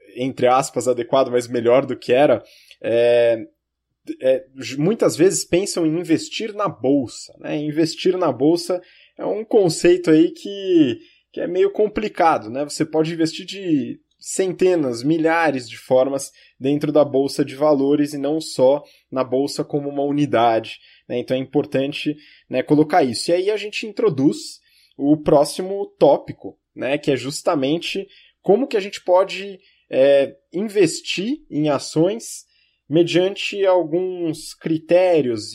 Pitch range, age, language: 135-185 Hz, 20-39, Portuguese